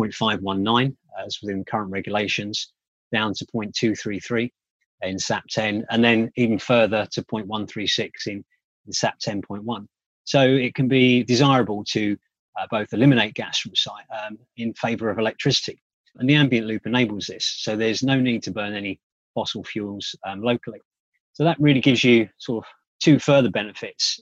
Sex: male